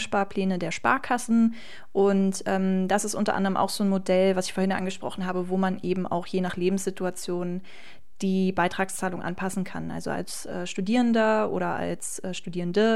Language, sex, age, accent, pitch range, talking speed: German, female, 20-39, German, 190-215 Hz, 170 wpm